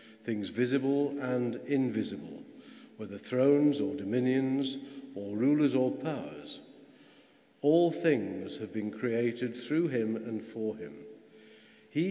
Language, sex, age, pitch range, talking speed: English, male, 50-69, 115-150 Hz, 115 wpm